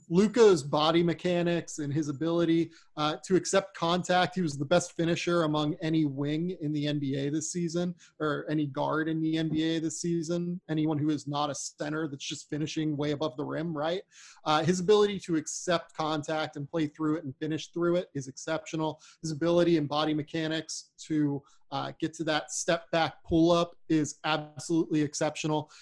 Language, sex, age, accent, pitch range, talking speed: English, male, 30-49, American, 150-175 Hz, 180 wpm